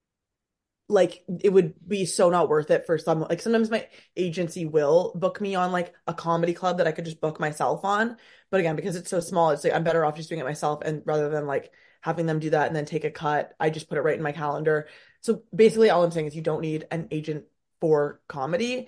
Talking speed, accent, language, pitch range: 250 wpm, American, English, 155-195 Hz